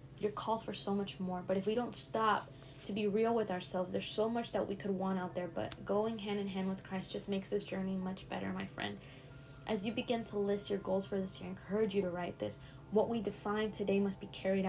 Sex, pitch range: female, 180-210 Hz